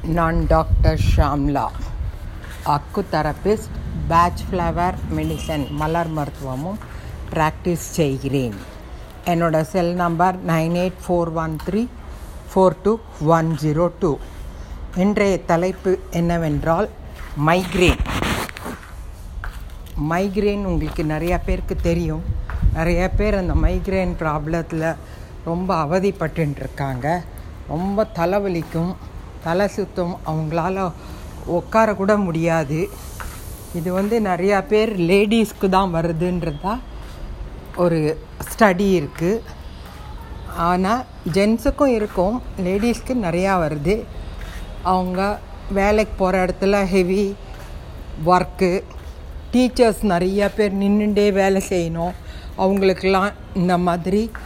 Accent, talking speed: native, 75 wpm